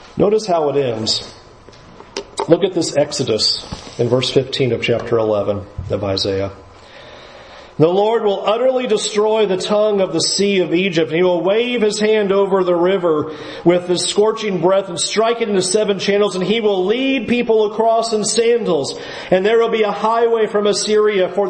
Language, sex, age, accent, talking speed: English, male, 40-59, American, 180 wpm